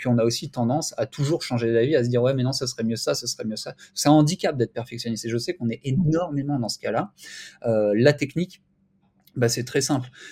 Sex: male